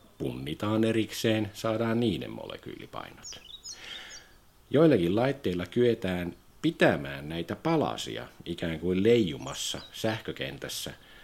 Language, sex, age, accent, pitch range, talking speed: Finnish, male, 50-69, native, 90-115 Hz, 80 wpm